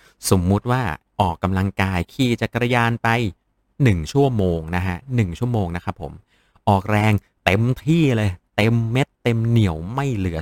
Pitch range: 90-115 Hz